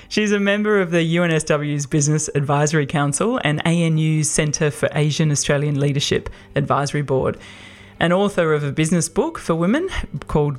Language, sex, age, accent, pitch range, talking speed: English, female, 20-39, Australian, 145-175 Hz, 145 wpm